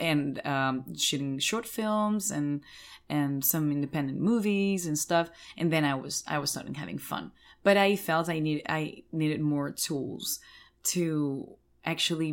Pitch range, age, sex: 145-175 Hz, 20-39, female